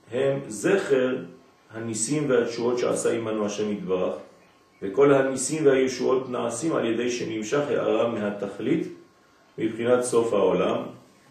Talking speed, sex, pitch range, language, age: 105 wpm, male, 110-145 Hz, French, 50-69